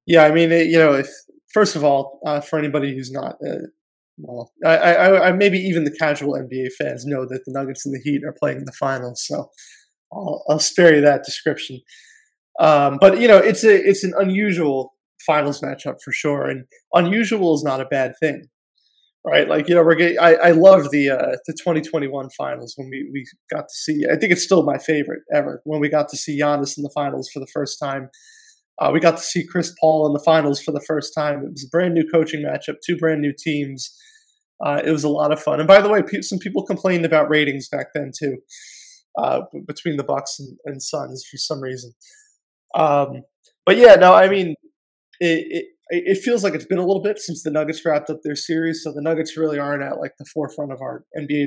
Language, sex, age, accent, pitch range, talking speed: English, male, 20-39, American, 140-175 Hz, 225 wpm